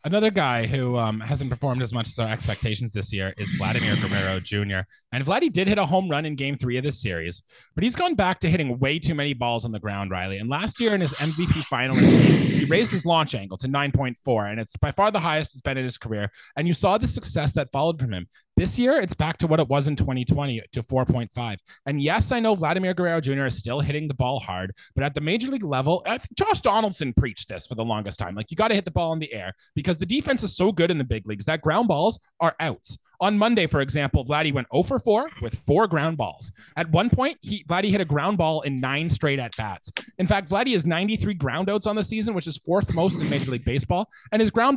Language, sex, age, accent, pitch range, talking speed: English, male, 20-39, American, 120-190 Hz, 255 wpm